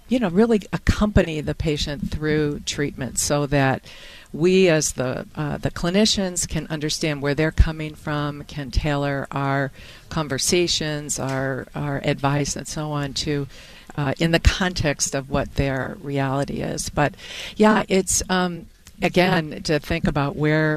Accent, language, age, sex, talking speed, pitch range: American, English, 50-69, female, 145 wpm, 140-165 Hz